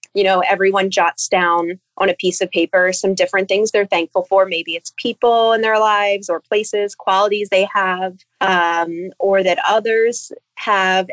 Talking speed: 175 wpm